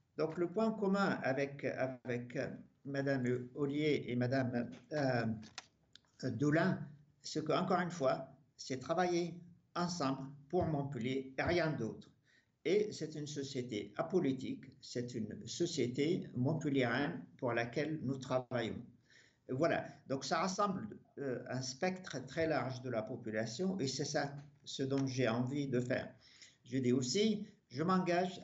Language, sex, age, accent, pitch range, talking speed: French, male, 50-69, French, 130-170 Hz, 135 wpm